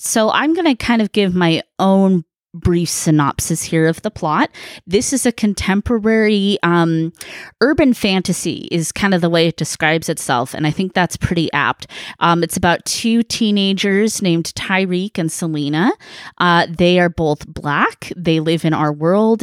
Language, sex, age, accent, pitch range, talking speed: English, female, 20-39, American, 160-195 Hz, 165 wpm